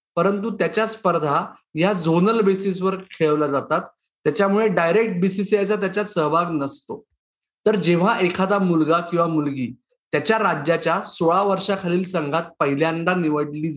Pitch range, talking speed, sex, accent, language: 165-205 Hz, 120 wpm, male, native, Marathi